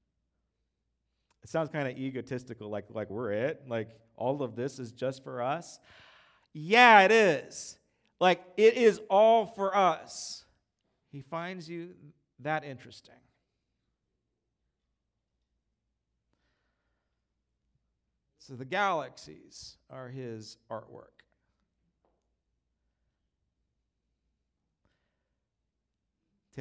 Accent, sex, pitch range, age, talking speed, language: American, male, 115-145 Hz, 40-59, 85 wpm, English